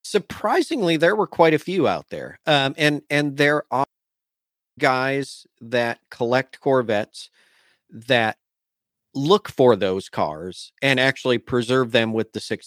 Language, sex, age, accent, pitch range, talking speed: English, male, 40-59, American, 100-130 Hz, 135 wpm